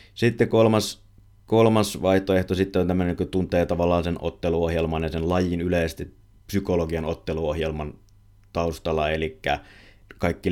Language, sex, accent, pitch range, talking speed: Finnish, male, native, 80-100 Hz, 120 wpm